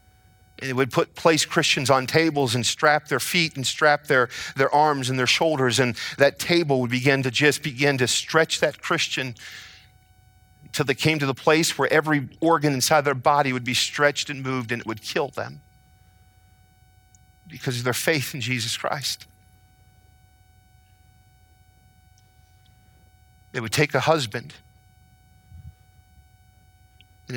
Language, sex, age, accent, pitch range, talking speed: English, male, 50-69, American, 105-150 Hz, 145 wpm